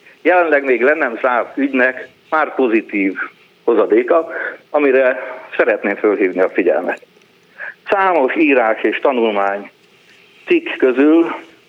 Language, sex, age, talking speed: Hungarian, male, 60-79, 100 wpm